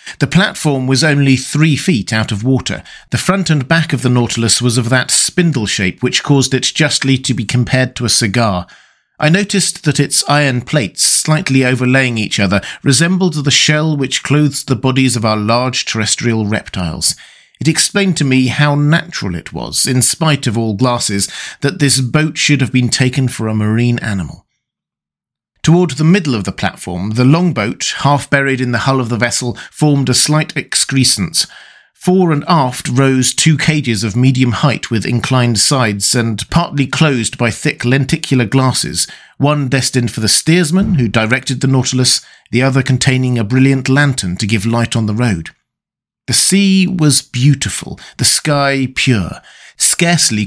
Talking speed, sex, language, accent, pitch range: 170 wpm, male, English, British, 120-145 Hz